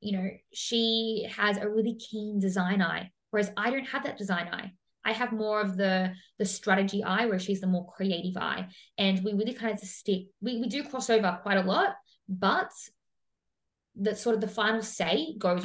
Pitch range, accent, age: 190-225 Hz, Australian, 20-39